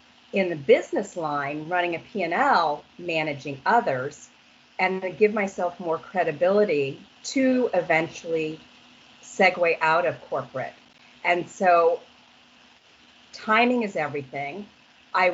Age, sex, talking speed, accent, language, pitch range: 40-59, female, 105 wpm, American, English, 160-215 Hz